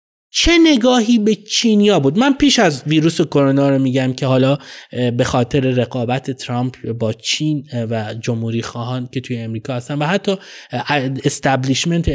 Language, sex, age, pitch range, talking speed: Persian, male, 20-39, 130-195 Hz, 155 wpm